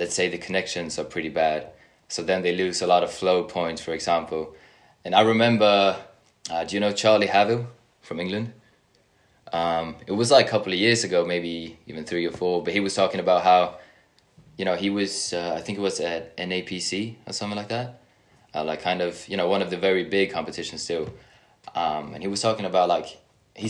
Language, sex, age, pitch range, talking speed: English, male, 20-39, 85-105 Hz, 215 wpm